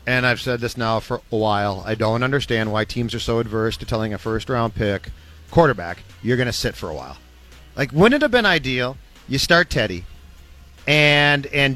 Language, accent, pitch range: English, American, 120-155 Hz